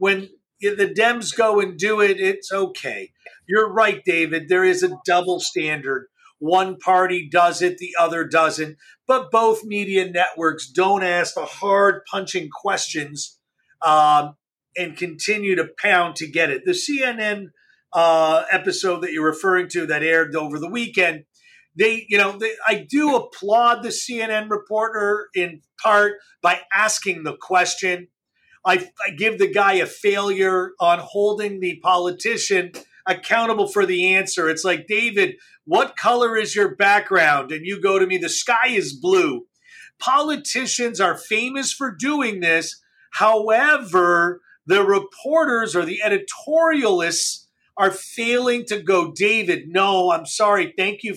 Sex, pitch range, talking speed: male, 180-225 Hz, 145 wpm